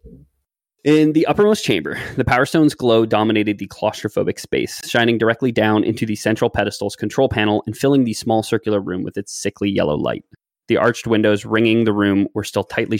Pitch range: 105-120 Hz